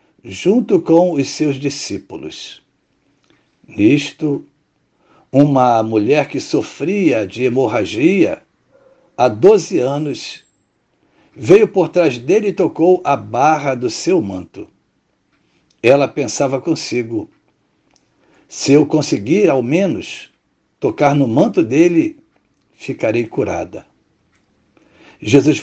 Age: 60-79